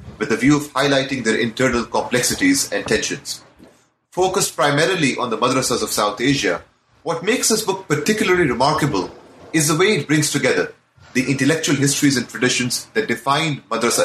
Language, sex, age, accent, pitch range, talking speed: English, male, 30-49, Indian, 125-155 Hz, 160 wpm